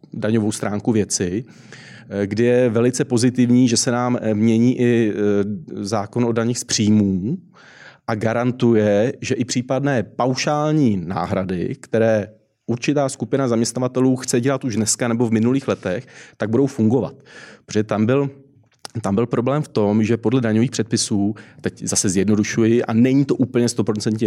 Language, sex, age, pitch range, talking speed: Czech, male, 30-49, 105-125 Hz, 145 wpm